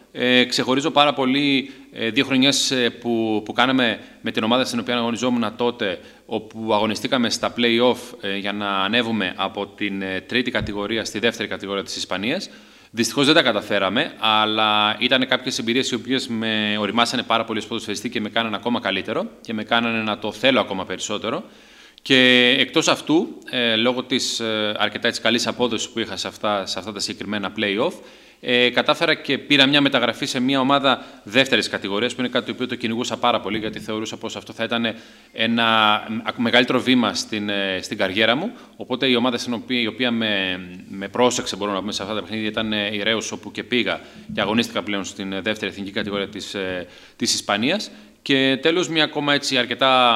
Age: 30-49